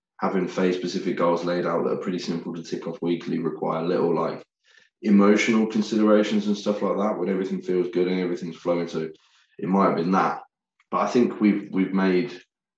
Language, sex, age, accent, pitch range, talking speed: English, male, 20-39, British, 85-100 Hz, 195 wpm